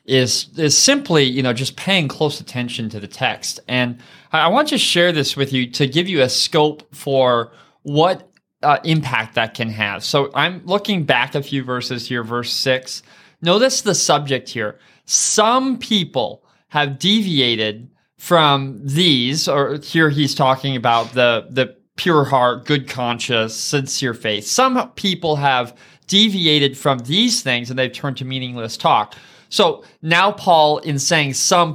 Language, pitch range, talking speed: English, 130-175 Hz, 160 wpm